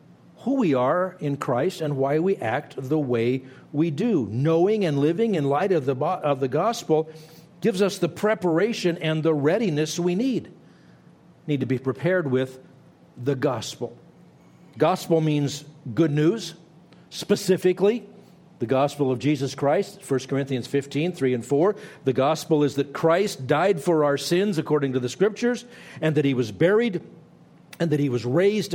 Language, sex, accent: English, male, American